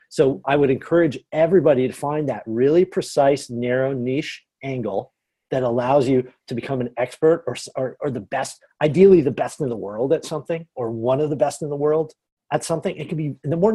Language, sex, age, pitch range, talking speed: English, male, 40-59, 130-195 Hz, 210 wpm